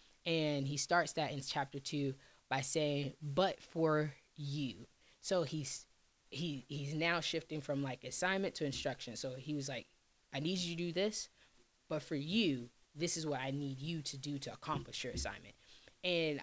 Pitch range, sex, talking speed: 135-155 Hz, female, 180 wpm